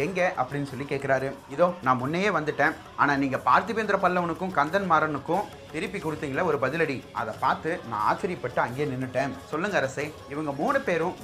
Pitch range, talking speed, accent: 135-180 Hz, 80 wpm, native